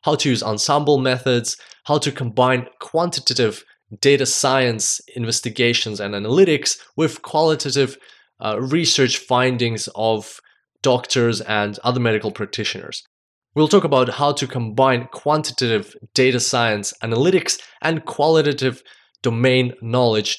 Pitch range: 115-150 Hz